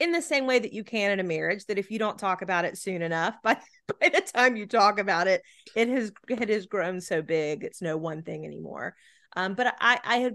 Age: 30-49